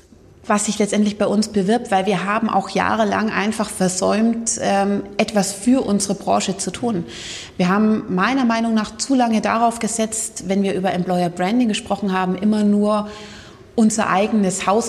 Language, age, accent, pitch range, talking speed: German, 30-49, German, 190-225 Hz, 160 wpm